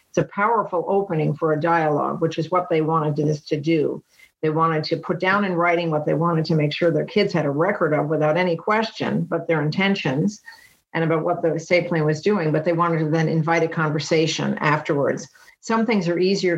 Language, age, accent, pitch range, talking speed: English, 50-69, American, 155-185 Hz, 220 wpm